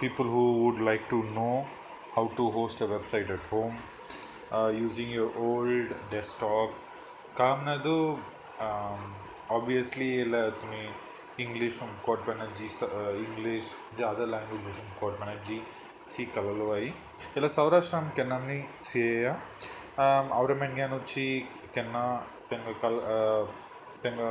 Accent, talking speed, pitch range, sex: Indian, 65 wpm, 110-130 Hz, male